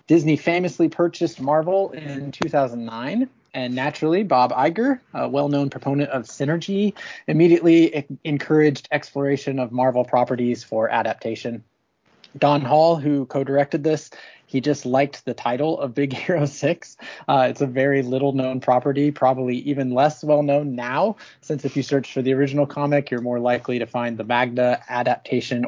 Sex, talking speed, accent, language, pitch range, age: male, 150 wpm, American, English, 125-160 Hz, 20-39